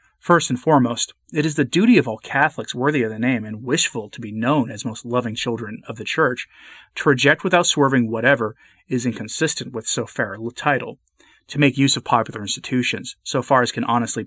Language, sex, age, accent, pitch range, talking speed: English, male, 30-49, American, 115-145 Hz, 205 wpm